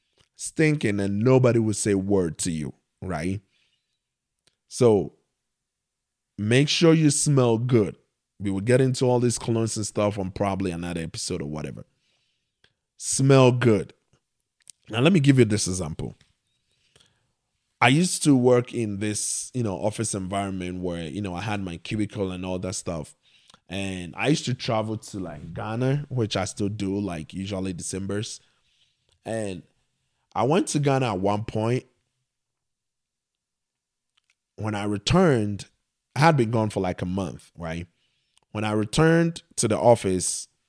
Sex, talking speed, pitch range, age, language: male, 150 wpm, 95-125 Hz, 20-39, English